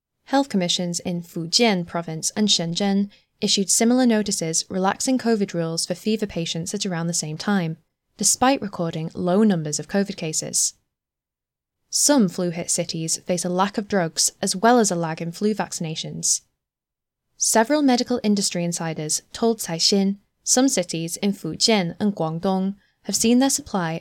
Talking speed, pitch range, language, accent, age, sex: 150 wpm, 170-215 Hz, English, British, 10-29, female